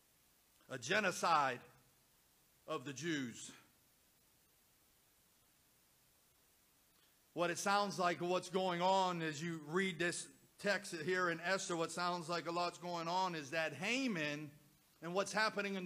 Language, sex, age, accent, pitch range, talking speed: English, male, 50-69, American, 165-205 Hz, 130 wpm